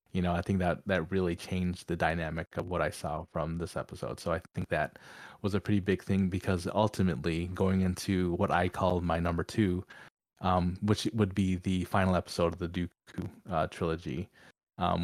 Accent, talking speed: American, 195 wpm